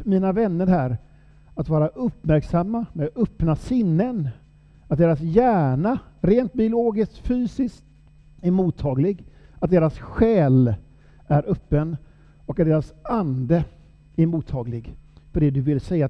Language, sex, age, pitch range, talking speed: Swedish, male, 50-69, 145-170 Hz, 125 wpm